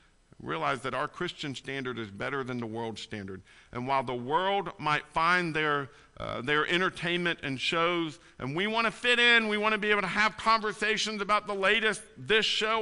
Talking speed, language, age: 195 wpm, English, 50-69